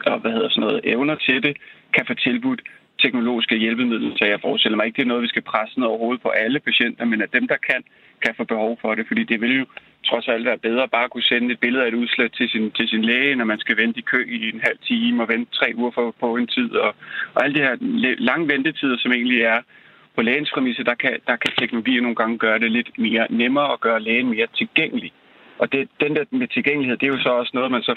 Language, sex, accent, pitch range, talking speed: Danish, male, native, 115-150 Hz, 255 wpm